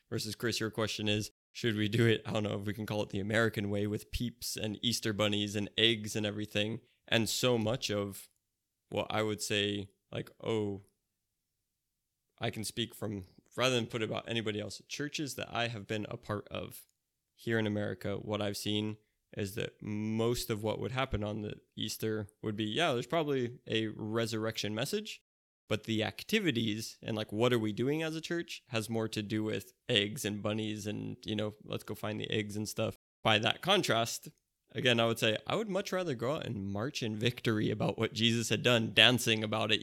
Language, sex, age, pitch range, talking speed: English, male, 20-39, 105-115 Hz, 205 wpm